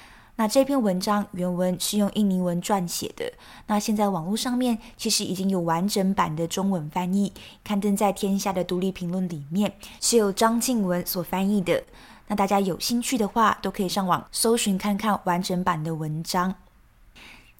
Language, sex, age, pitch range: Chinese, female, 20-39, 180-215 Hz